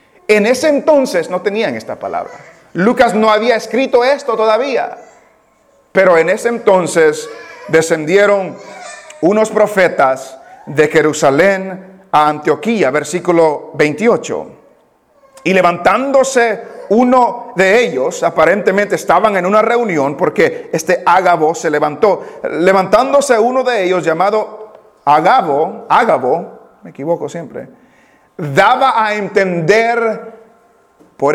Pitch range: 185-260 Hz